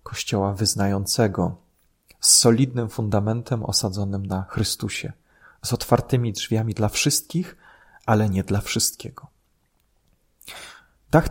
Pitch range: 95-115 Hz